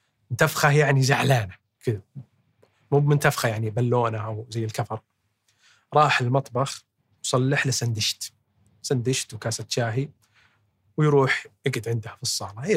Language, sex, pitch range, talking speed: Arabic, male, 110-145 Hz, 115 wpm